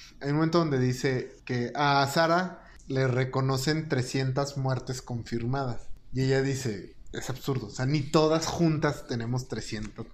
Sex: male